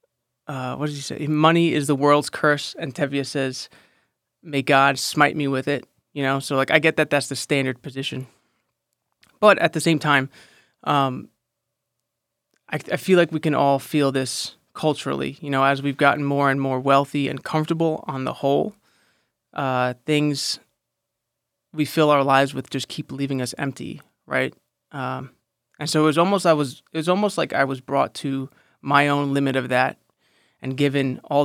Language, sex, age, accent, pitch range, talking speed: English, male, 20-39, American, 135-155 Hz, 185 wpm